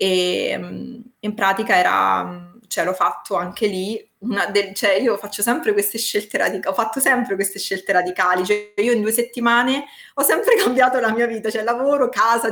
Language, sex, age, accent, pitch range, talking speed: Italian, female, 20-39, native, 180-220 Hz, 180 wpm